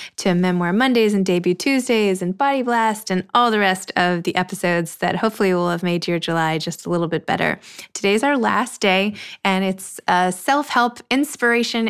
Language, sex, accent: English, female, American